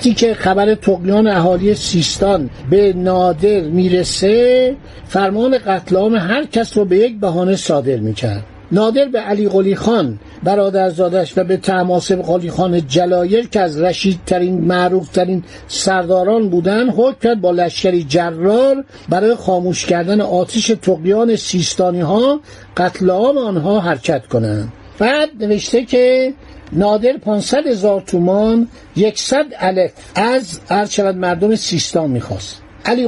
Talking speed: 125 wpm